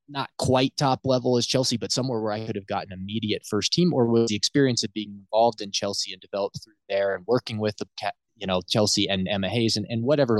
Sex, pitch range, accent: male, 100-125 Hz, American